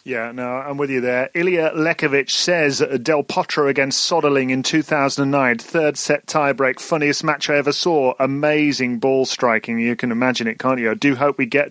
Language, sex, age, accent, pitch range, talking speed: English, male, 30-49, British, 130-150 Hz, 190 wpm